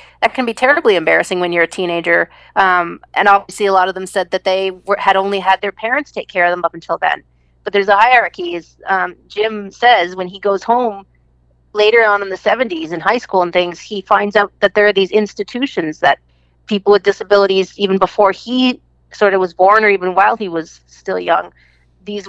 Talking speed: 215 wpm